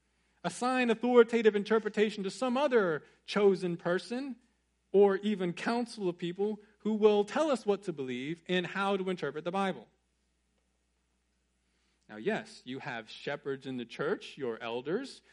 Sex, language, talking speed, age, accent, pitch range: male, English, 140 wpm, 40-59, American, 125-205 Hz